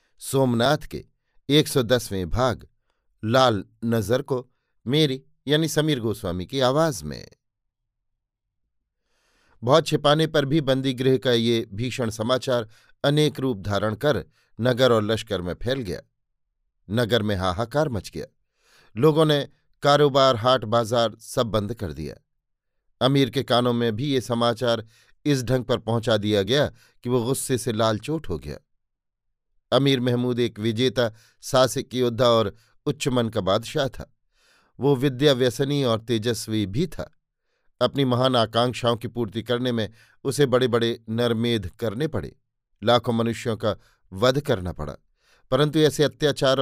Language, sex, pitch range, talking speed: Hindi, male, 115-135 Hz, 140 wpm